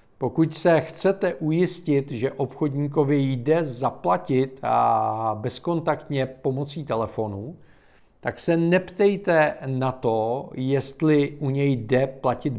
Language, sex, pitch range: Czech, male, 120-155 Hz